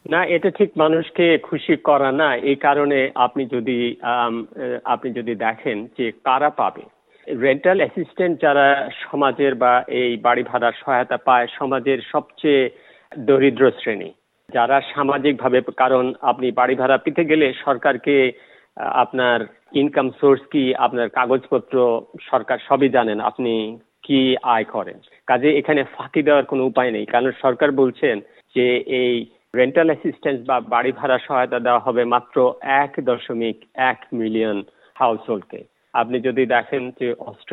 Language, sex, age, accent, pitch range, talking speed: Bengali, male, 50-69, native, 125-150 Hz, 105 wpm